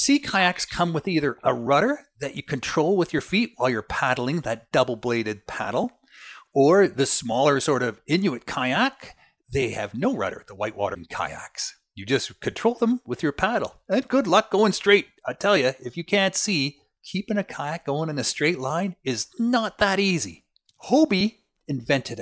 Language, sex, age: English, male, 40-59